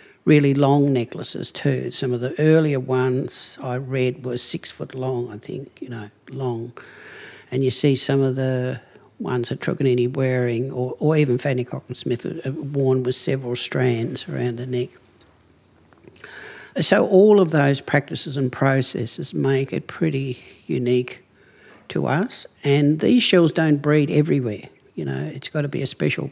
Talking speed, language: 155 wpm, English